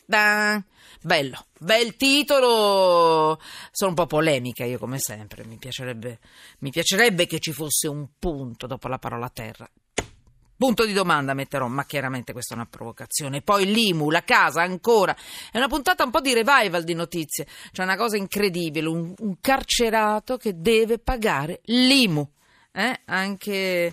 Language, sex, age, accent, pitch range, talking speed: Italian, female, 40-59, native, 150-220 Hz, 145 wpm